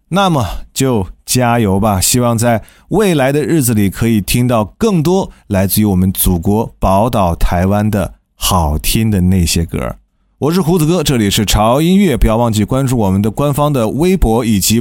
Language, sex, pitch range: Chinese, male, 110-175 Hz